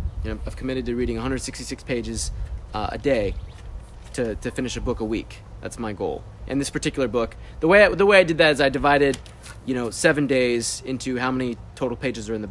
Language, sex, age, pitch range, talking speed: English, male, 20-39, 105-130 Hz, 220 wpm